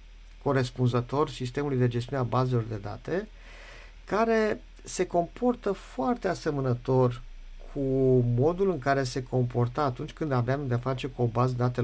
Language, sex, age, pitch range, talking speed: Romanian, male, 50-69, 120-175 Hz, 140 wpm